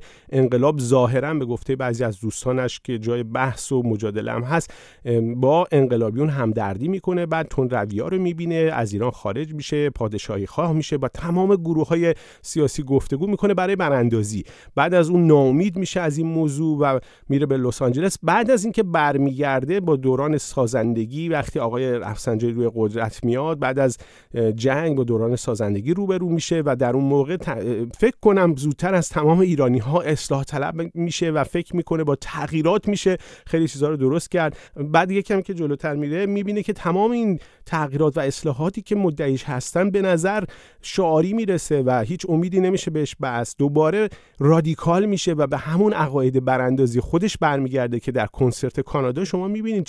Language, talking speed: Persian, 165 wpm